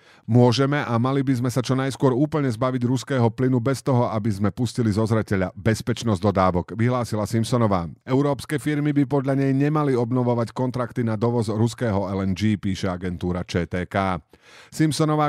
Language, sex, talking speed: Slovak, male, 150 wpm